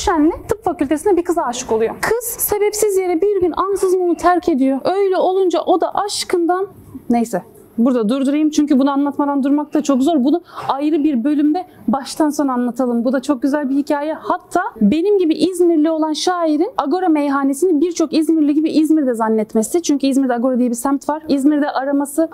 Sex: female